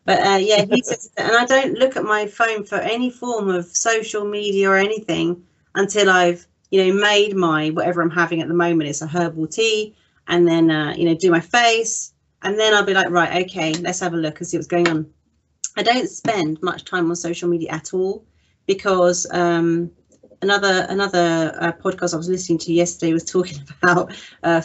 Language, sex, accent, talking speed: English, female, British, 210 wpm